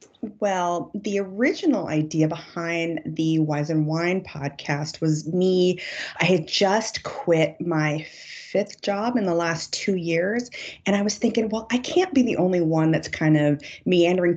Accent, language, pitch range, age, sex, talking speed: American, English, 155-190 Hz, 30-49, female, 165 wpm